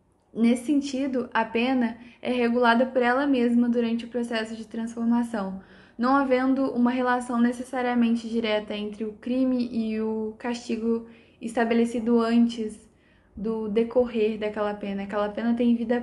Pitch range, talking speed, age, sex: 230-260 Hz, 135 wpm, 10-29, female